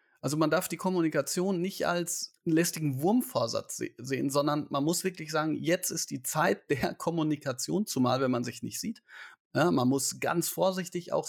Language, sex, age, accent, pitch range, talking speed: German, male, 30-49, German, 140-190 Hz, 185 wpm